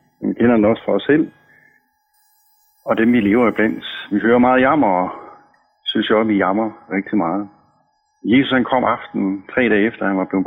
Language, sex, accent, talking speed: Danish, male, native, 205 wpm